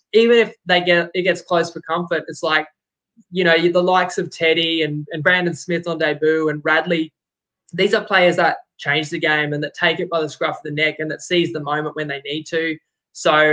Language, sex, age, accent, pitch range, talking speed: English, male, 20-39, Australian, 155-185 Hz, 230 wpm